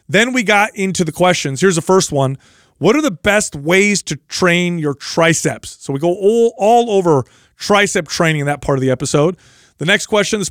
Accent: American